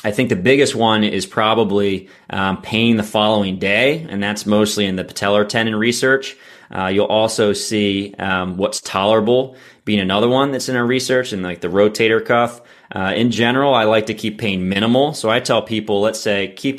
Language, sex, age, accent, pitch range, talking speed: English, male, 20-39, American, 100-115 Hz, 195 wpm